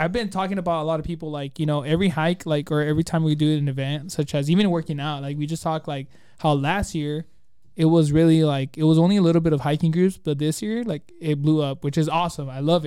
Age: 20-39